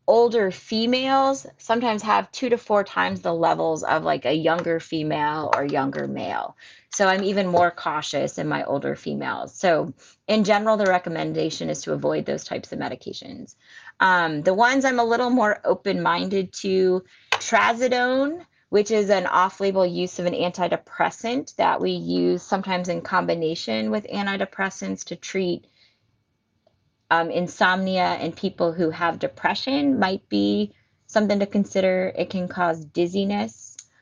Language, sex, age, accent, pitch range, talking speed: English, female, 30-49, American, 160-200 Hz, 150 wpm